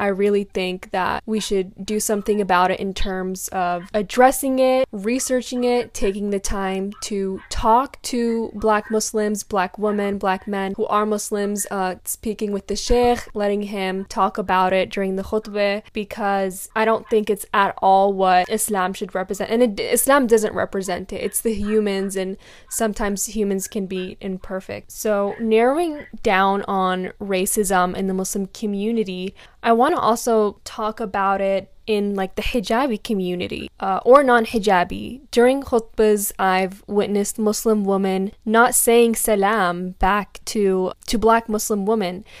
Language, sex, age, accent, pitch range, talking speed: English, female, 10-29, American, 195-225 Hz, 155 wpm